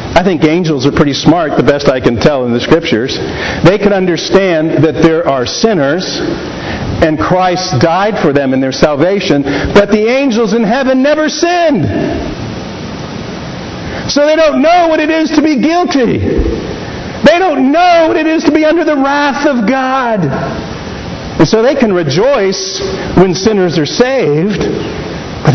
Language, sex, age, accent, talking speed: English, male, 50-69, American, 160 wpm